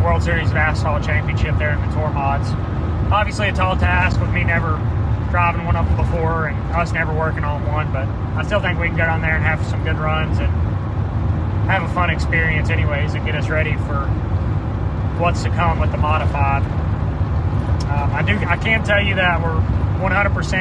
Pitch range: 85-105 Hz